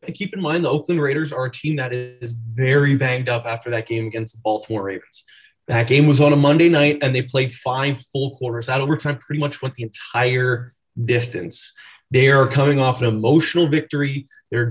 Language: English